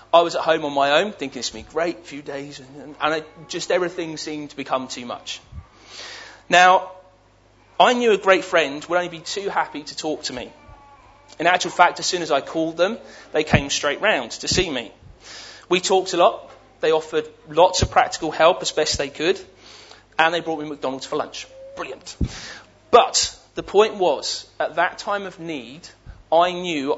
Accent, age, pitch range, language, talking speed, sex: British, 30-49, 150-185 Hz, English, 200 wpm, male